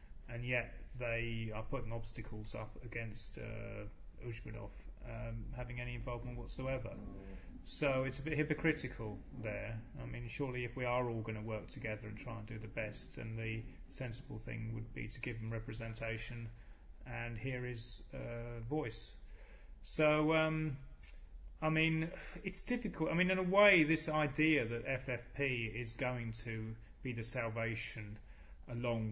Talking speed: 155 wpm